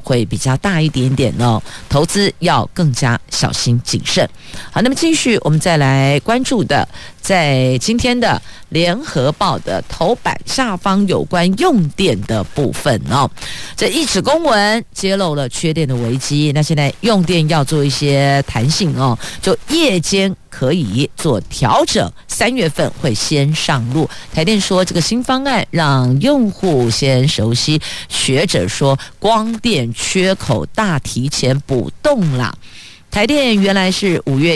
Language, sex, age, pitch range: Chinese, female, 50-69, 135-195 Hz